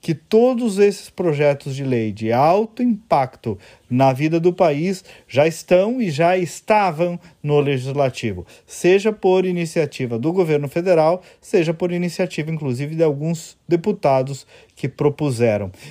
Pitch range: 135-185 Hz